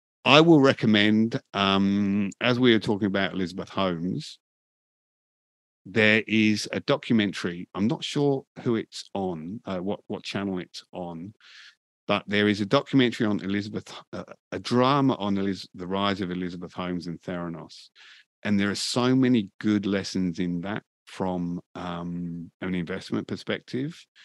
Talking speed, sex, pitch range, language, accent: 145 wpm, male, 90-110 Hz, English, British